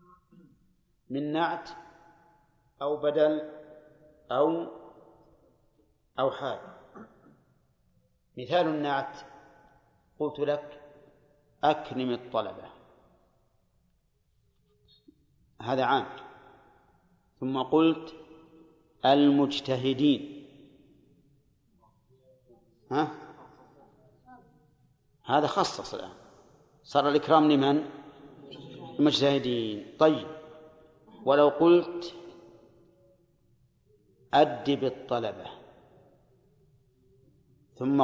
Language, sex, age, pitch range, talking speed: Arabic, male, 50-69, 130-155 Hz, 50 wpm